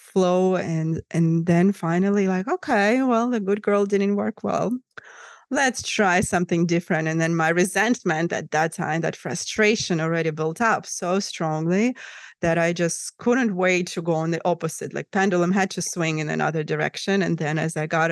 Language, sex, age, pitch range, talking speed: English, female, 20-39, 160-190 Hz, 180 wpm